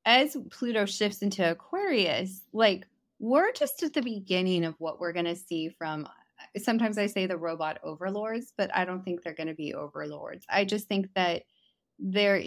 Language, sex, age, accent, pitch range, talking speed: English, female, 20-39, American, 170-210 Hz, 185 wpm